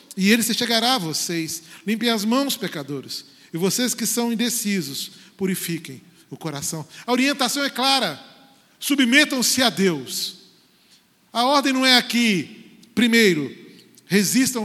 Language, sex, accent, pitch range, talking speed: Portuguese, male, Brazilian, 145-220 Hz, 130 wpm